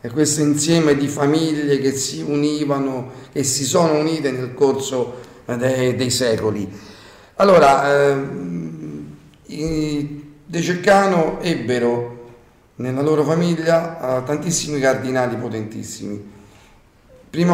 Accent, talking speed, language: native, 90 wpm, Italian